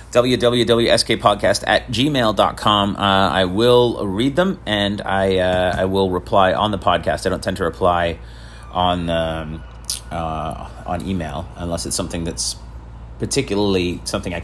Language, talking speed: English, 140 wpm